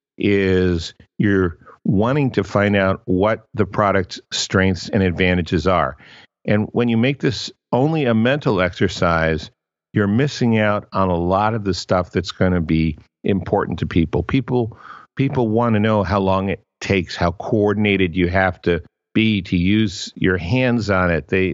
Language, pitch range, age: English, 90-110 Hz, 50-69